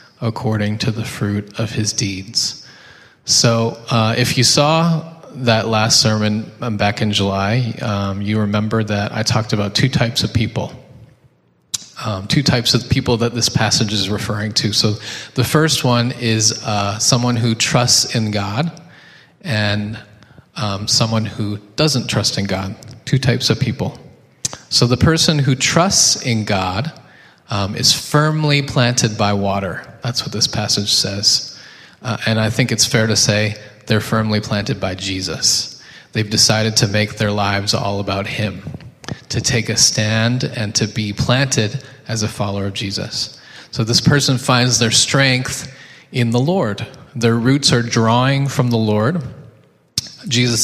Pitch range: 105-130 Hz